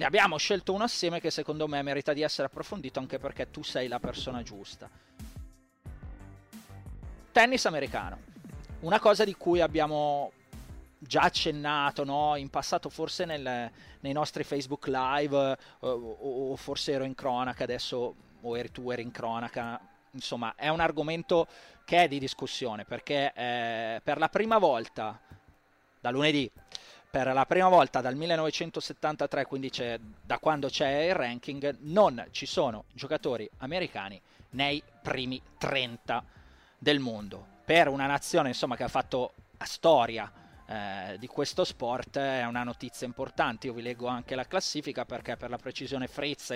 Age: 30-49